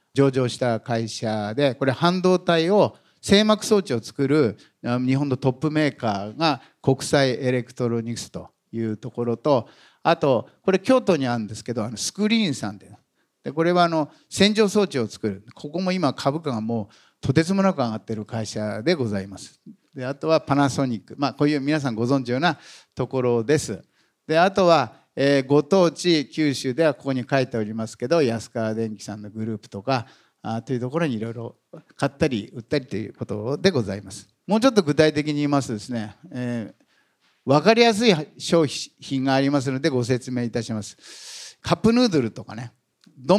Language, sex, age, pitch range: Japanese, male, 50-69, 115-160 Hz